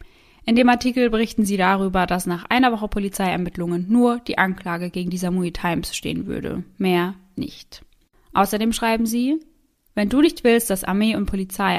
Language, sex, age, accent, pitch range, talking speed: German, female, 20-39, German, 180-215 Hz, 170 wpm